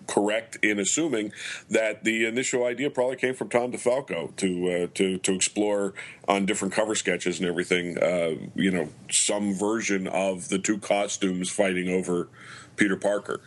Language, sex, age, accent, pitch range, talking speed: English, male, 40-59, American, 95-110 Hz, 160 wpm